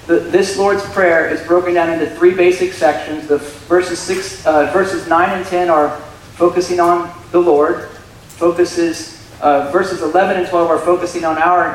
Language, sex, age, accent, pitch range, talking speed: English, male, 40-59, American, 155-190 Hz, 170 wpm